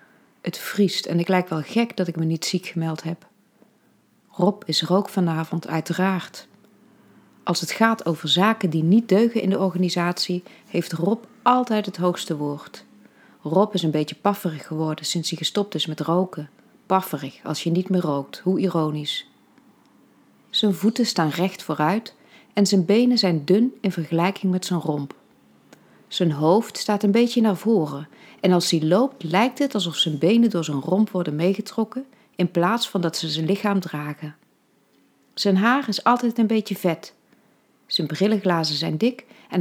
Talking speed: 170 wpm